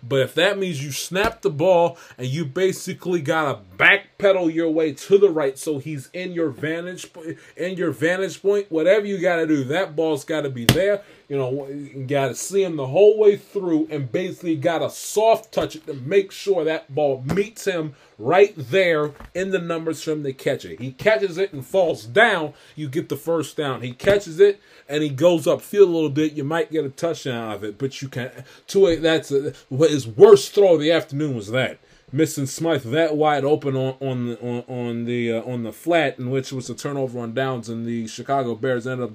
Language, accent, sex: English, American, male